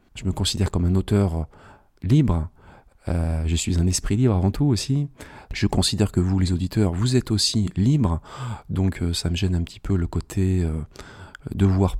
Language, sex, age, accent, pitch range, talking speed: French, male, 40-59, French, 85-105 Hz, 195 wpm